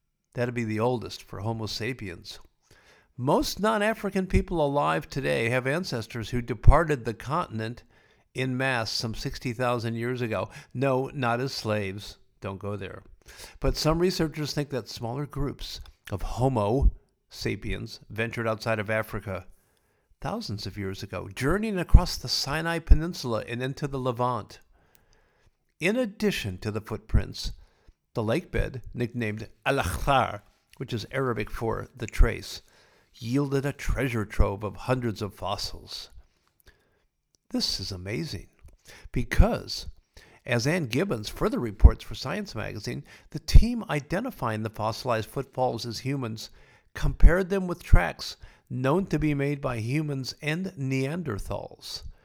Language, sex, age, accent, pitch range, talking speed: English, male, 50-69, American, 105-140 Hz, 130 wpm